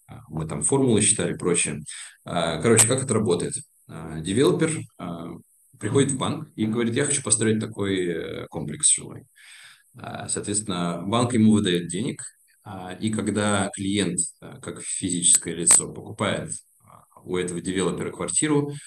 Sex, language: male, Russian